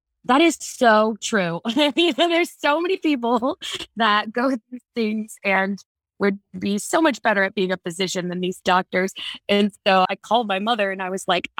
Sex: female